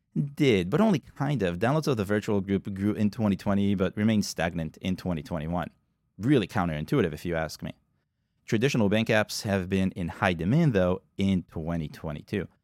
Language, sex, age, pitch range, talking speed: English, male, 30-49, 95-125 Hz, 165 wpm